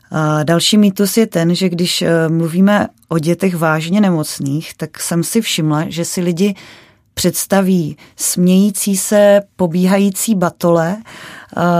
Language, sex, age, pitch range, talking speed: Czech, female, 30-49, 170-190 Hz, 115 wpm